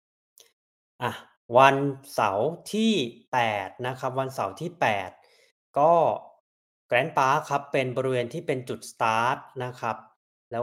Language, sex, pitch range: Thai, male, 120-150 Hz